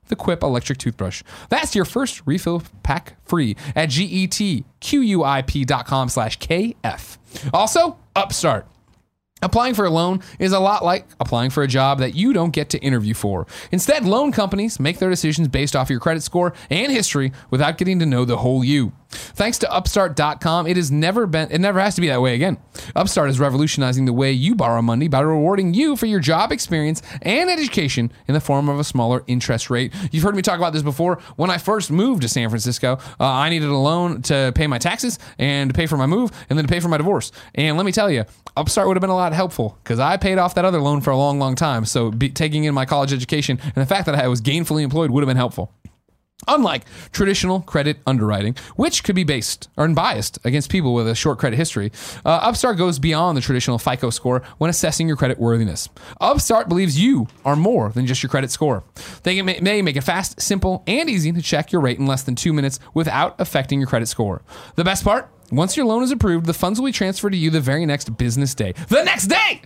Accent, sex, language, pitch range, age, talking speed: American, male, English, 130-185 Hz, 30-49, 220 wpm